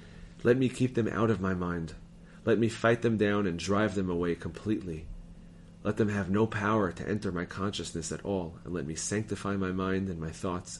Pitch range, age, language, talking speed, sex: 85-110 Hz, 30-49, English, 210 wpm, male